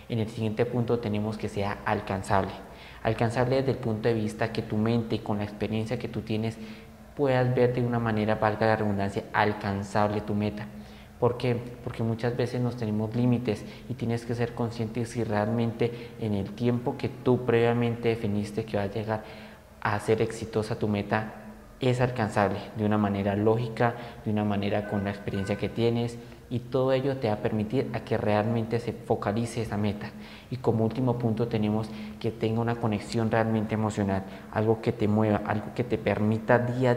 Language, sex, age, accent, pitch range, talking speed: Spanish, male, 20-39, Colombian, 105-120 Hz, 185 wpm